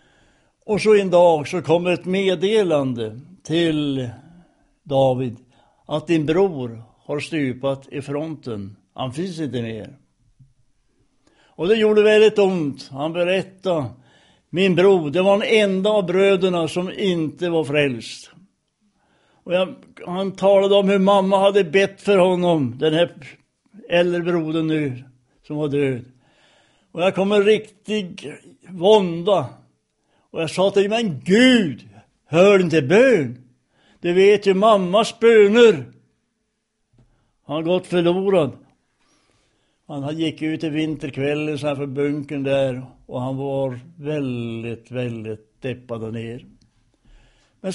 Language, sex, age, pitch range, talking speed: Swedish, male, 60-79, 130-190 Hz, 125 wpm